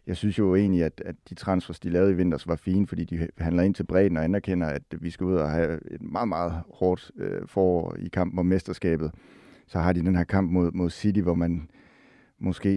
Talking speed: 215 wpm